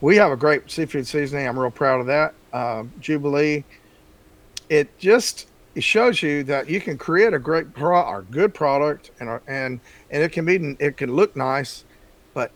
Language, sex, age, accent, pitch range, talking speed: English, male, 50-69, American, 125-150 Hz, 195 wpm